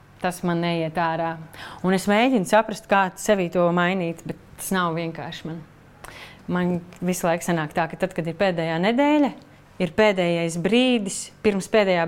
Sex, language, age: female, English, 30-49